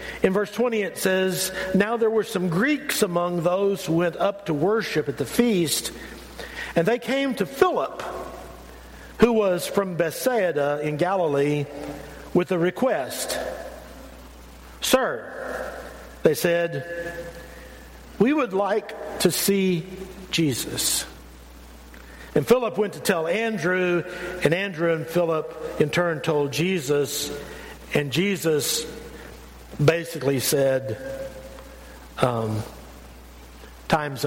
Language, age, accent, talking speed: English, 50-69, American, 110 wpm